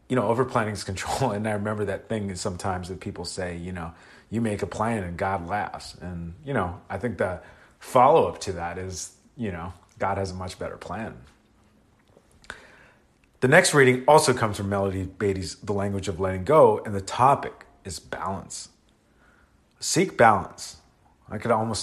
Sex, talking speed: male, 175 wpm